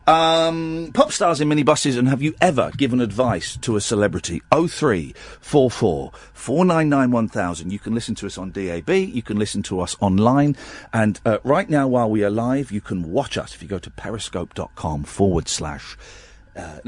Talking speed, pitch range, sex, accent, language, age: 200 wpm, 100-140 Hz, male, British, English, 40-59